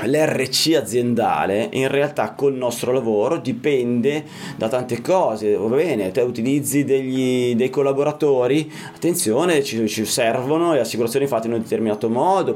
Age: 30-49